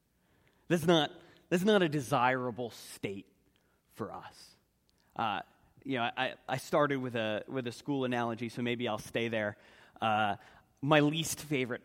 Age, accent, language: 20-39, American, English